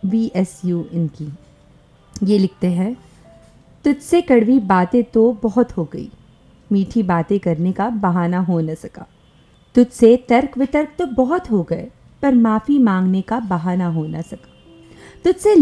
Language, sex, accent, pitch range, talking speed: English, female, Indian, 180-240 Hz, 140 wpm